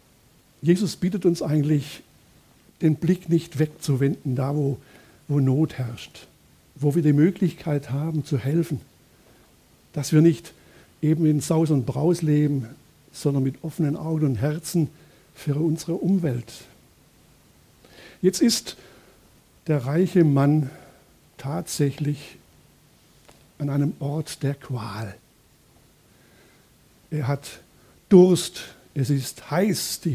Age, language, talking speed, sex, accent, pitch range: 60-79, German, 110 wpm, male, German, 145-175 Hz